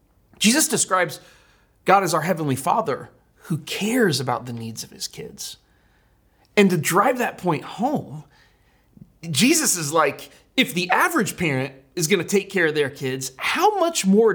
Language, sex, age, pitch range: English, male, 30-49, 160-220 Hz